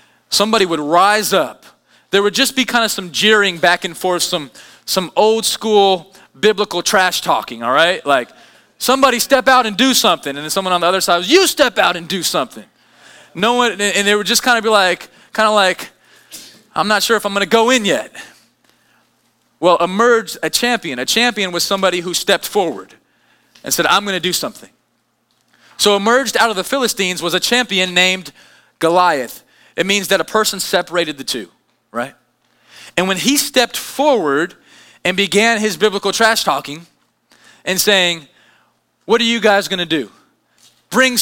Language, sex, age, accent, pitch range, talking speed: English, male, 20-39, American, 180-235 Hz, 185 wpm